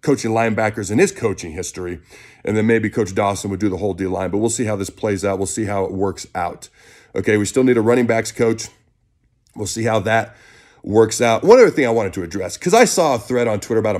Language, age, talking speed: English, 30-49, 250 wpm